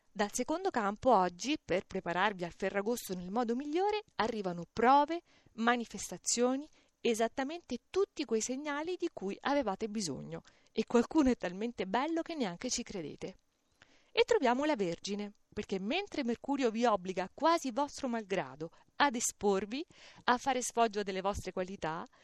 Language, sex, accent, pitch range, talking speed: Italian, female, native, 205-285 Hz, 140 wpm